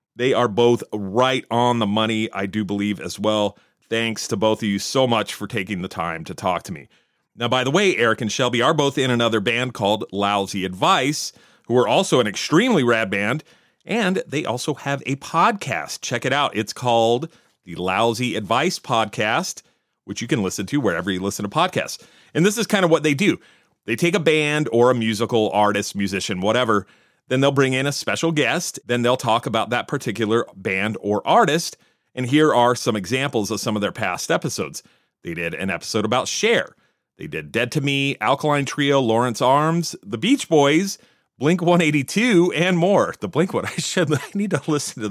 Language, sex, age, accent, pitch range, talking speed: English, male, 40-59, American, 110-150 Hz, 200 wpm